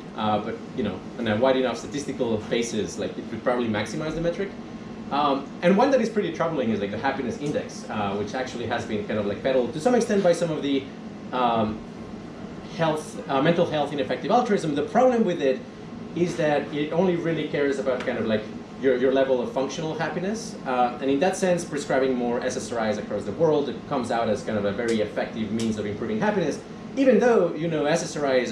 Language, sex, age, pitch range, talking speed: English, male, 30-49, 120-175 Hz, 215 wpm